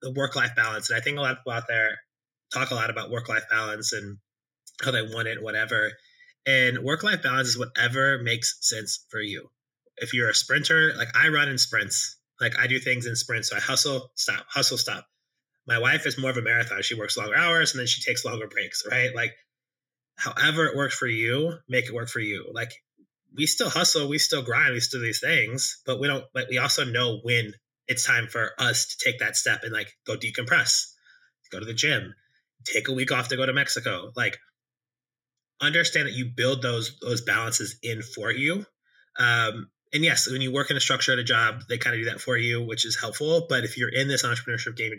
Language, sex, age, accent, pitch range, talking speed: English, male, 20-39, American, 115-140 Hz, 225 wpm